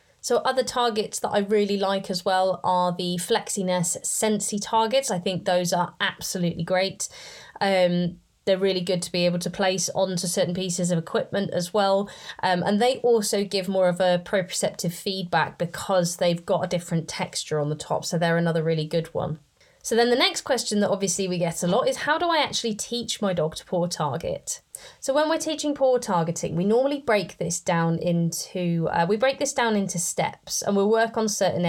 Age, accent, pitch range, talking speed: 20-39, British, 170-205 Hz, 205 wpm